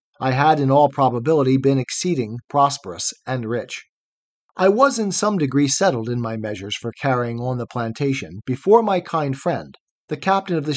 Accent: American